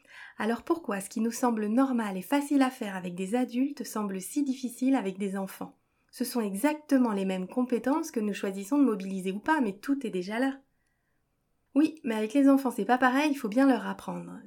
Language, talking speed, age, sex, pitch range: French, 210 wpm, 30-49, female, 210-265 Hz